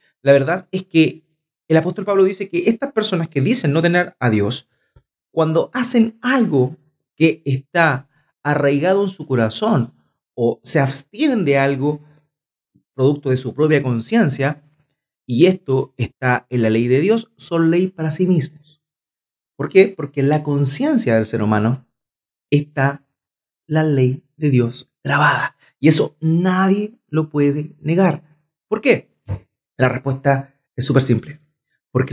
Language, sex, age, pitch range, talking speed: Spanish, male, 30-49, 130-165 Hz, 145 wpm